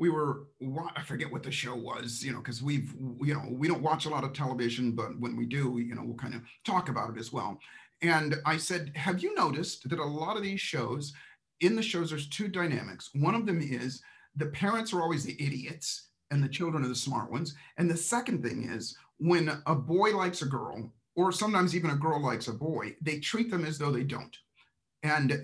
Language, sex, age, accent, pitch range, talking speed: English, male, 40-59, American, 125-160 Hz, 230 wpm